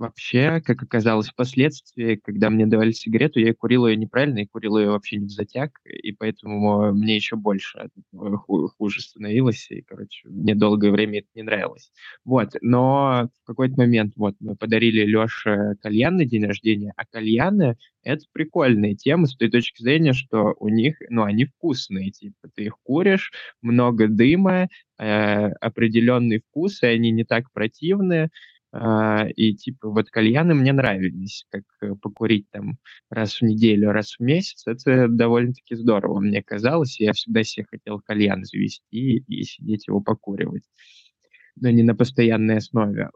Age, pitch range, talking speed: 20-39, 105-125 Hz, 155 wpm